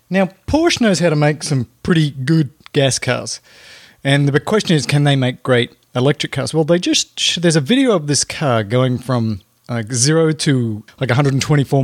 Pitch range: 125-160 Hz